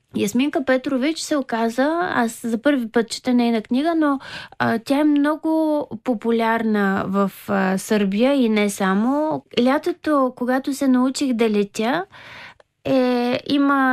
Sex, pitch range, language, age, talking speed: female, 225-275 Hz, Bulgarian, 20-39, 135 wpm